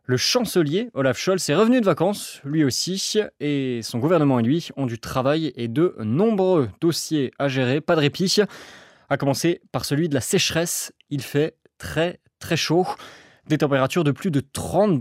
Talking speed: 180 wpm